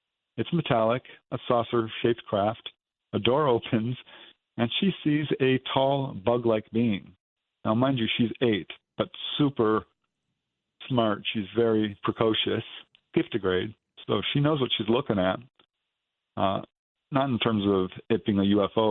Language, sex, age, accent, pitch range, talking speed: English, male, 50-69, American, 110-125 Hz, 135 wpm